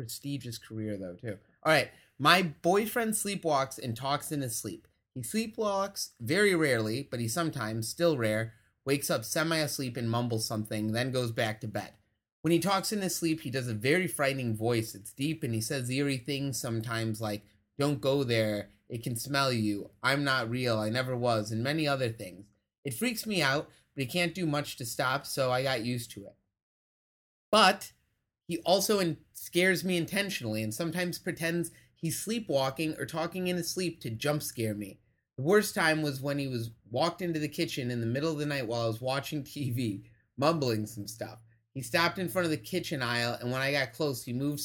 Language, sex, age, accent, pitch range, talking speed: English, male, 30-49, American, 115-160 Hz, 200 wpm